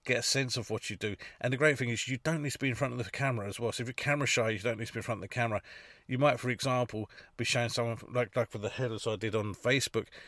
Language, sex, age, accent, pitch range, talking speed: English, male, 40-59, British, 110-125 Hz, 320 wpm